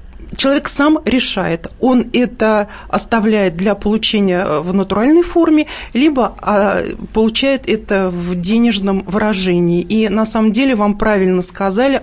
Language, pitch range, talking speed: Russian, 195-245 Hz, 120 wpm